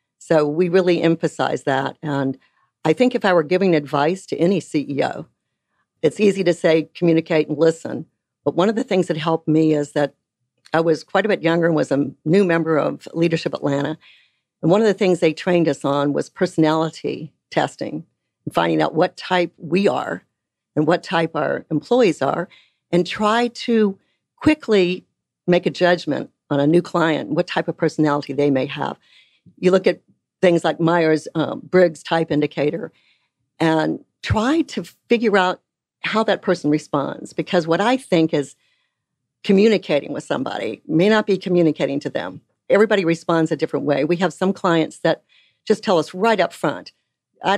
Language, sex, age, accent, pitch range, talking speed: English, female, 60-79, American, 155-185 Hz, 175 wpm